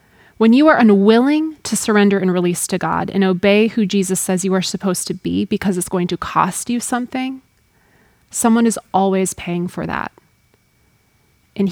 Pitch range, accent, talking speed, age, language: 185-220 Hz, American, 175 wpm, 20-39, English